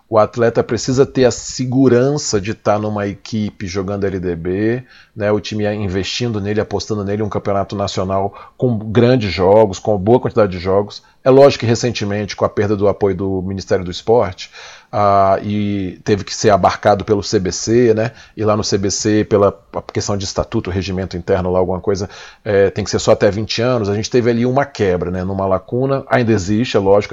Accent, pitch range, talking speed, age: Brazilian, 100-125 Hz, 190 wpm, 40-59